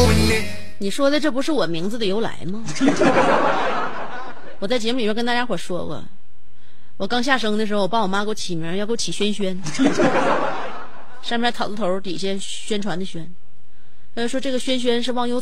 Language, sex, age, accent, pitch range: Chinese, female, 30-49, native, 180-245 Hz